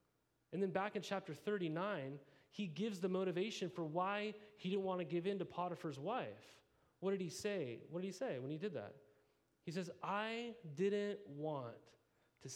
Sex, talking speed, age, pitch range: male, 185 wpm, 30-49, 145-185 Hz